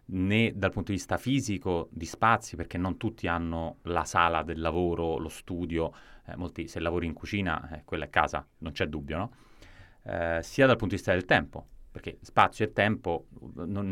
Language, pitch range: Italian, 85-105 Hz